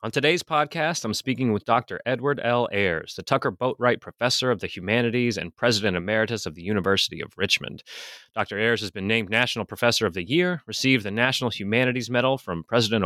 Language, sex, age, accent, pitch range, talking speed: English, male, 30-49, American, 100-130 Hz, 195 wpm